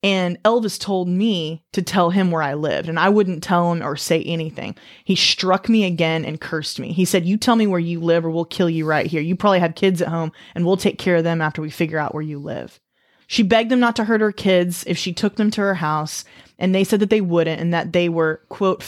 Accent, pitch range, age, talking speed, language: American, 165-200 Hz, 20-39, 265 wpm, English